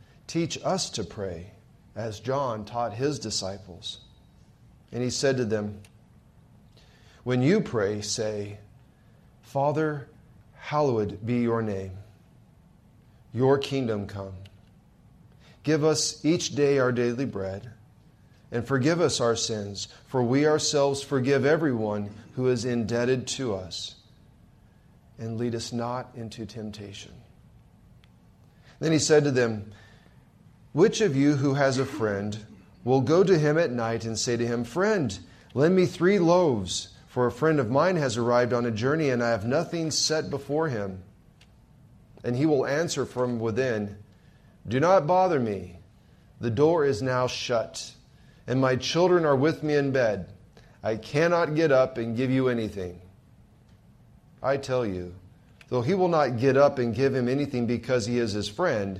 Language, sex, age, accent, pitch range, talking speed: English, male, 40-59, American, 110-140 Hz, 150 wpm